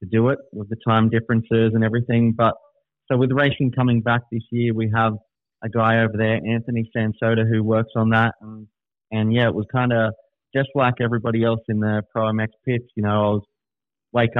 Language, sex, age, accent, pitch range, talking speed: English, male, 20-39, Australian, 105-115 Hz, 210 wpm